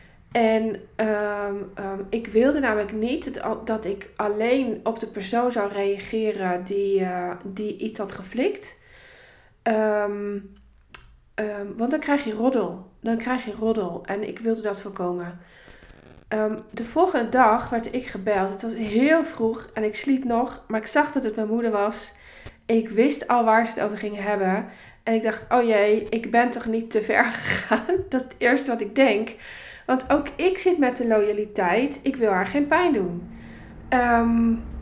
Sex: female